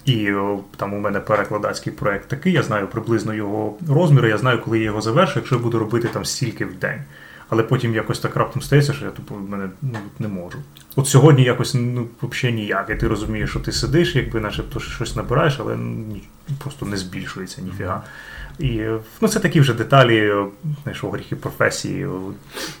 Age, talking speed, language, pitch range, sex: 20-39, 185 wpm, Ukrainian, 110-140 Hz, male